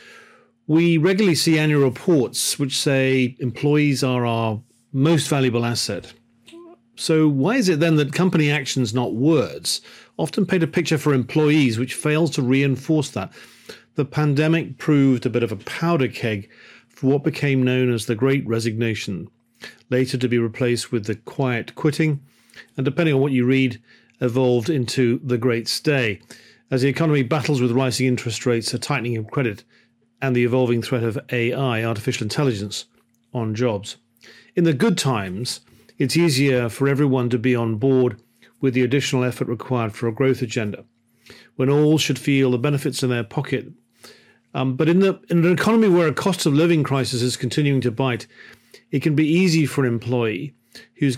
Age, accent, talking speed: 40-59, British, 170 wpm